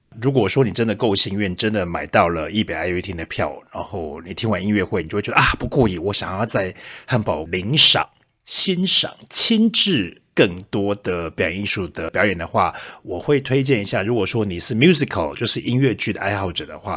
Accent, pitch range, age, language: native, 95-145 Hz, 30-49, Chinese